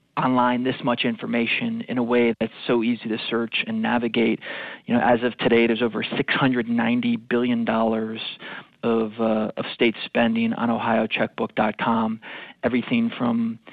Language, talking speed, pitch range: English, 140 wpm, 115-155 Hz